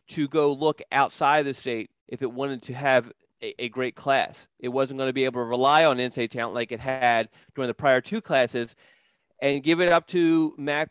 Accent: American